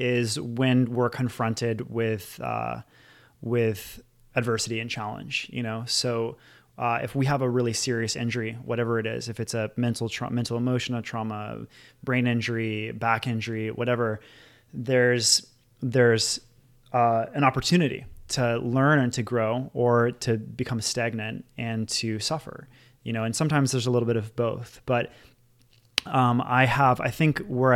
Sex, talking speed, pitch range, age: male, 155 wpm, 115-125 Hz, 20-39